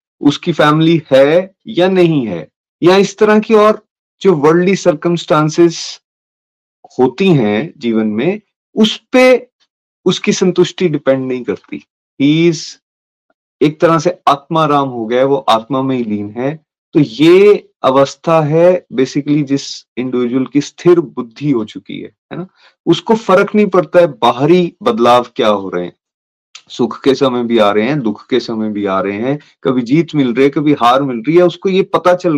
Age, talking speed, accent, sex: 30-49, 170 wpm, native, male